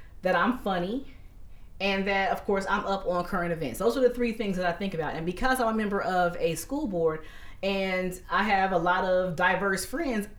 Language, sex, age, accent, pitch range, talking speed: English, female, 30-49, American, 185-245 Hz, 220 wpm